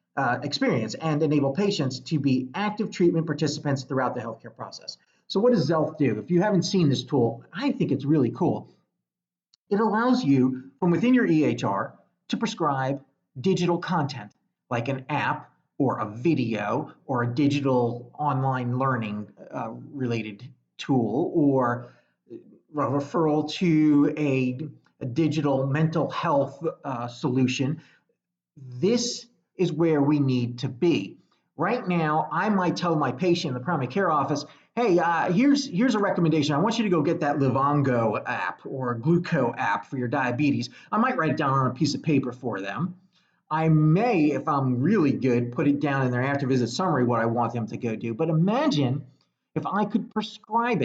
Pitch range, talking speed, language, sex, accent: 130-180 Hz, 170 wpm, English, male, American